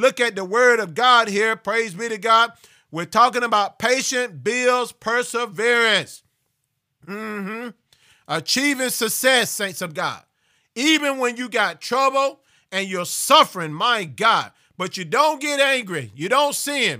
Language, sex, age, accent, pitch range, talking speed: English, male, 40-59, American, 210-245 Hz, 145 wpm